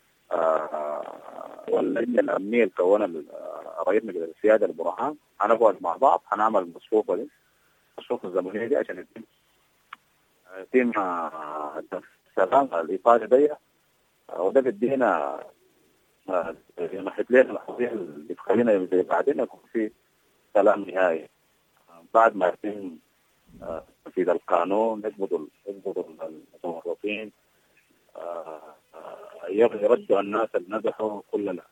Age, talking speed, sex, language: 40-59, 85 wpm, male, English